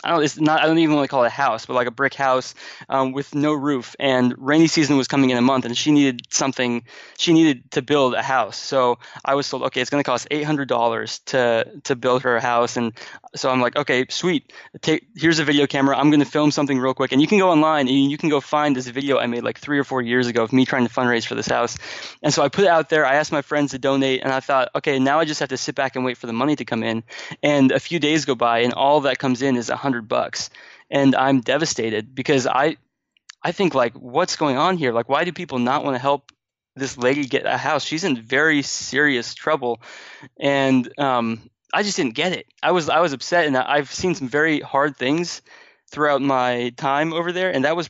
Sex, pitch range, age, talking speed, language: male, 125-150 Hz, 20-39, 260 wpm, English